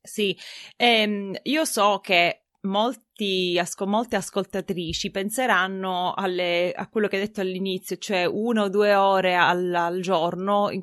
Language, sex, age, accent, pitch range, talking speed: Italian, female, 20-39, native, 180-210 Hz, 125 wpm